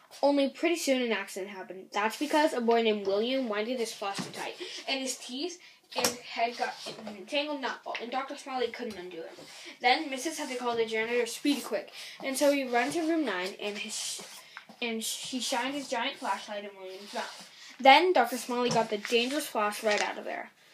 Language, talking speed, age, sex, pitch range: English, 205 wpm, 10-29, female, 220-295 Hz